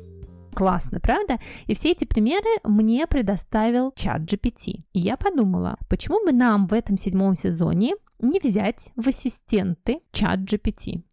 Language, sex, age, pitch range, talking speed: Russian, female, 20-39, 175-225 Hz, 140 wpm